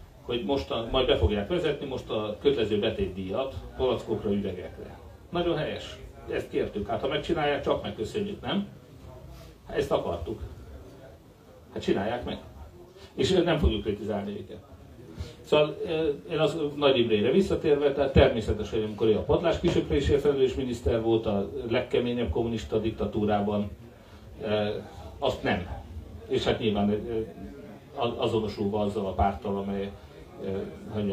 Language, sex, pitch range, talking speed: Hungarian, male, 100-120 Hz, 120 wpm